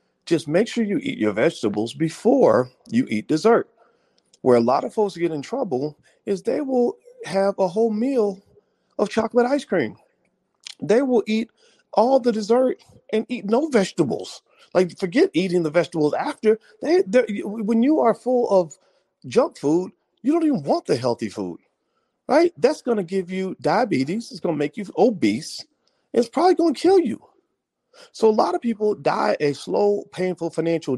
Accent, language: American, English